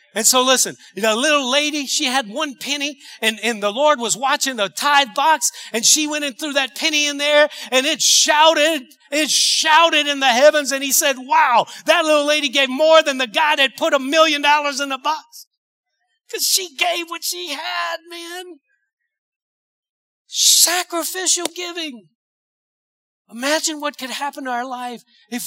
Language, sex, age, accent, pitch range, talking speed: English, male, 50-69, American, 220-300 Hz, 170 wpm